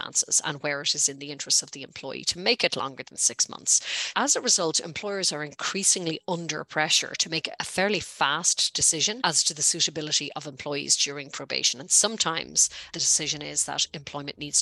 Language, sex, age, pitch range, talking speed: English, female, 30-49, 150-185 Hz, 195 wpm